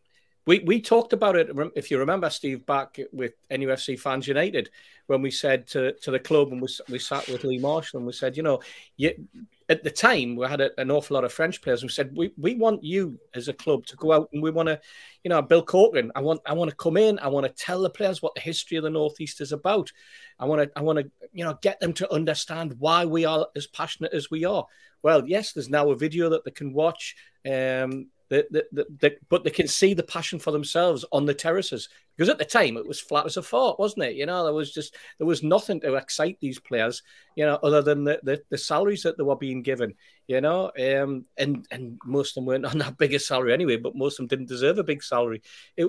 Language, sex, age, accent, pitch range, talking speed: English, male, 40-59, British, 135-170 Hz, 255 wpm